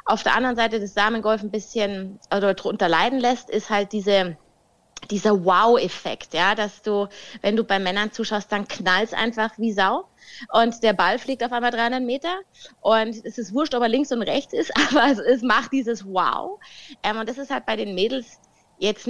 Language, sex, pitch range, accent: German, female, 205-240 Hz, German